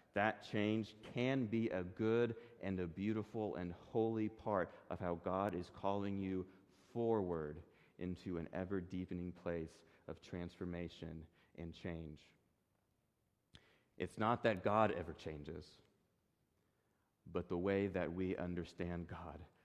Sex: male